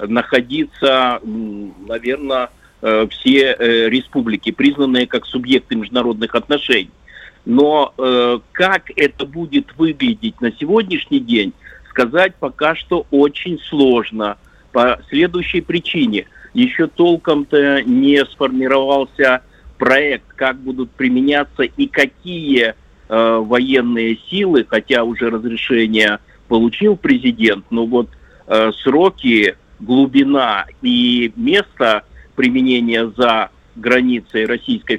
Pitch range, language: 120-145 Hz, Russian